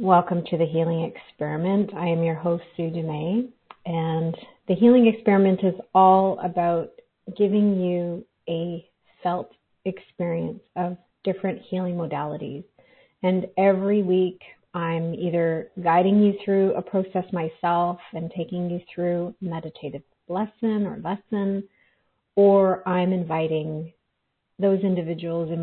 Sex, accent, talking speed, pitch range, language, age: female, American, 120 wpm, 165-195 Hz, English, 30-49